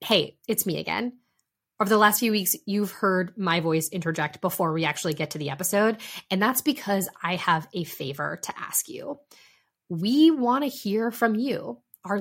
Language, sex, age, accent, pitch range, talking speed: English, female, 20-39, American, 175-230 Hz, 185 wpm